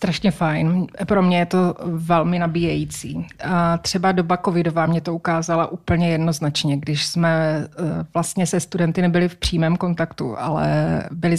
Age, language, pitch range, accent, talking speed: 30-49, Czech, 160-180 Hz, native, 135 wpm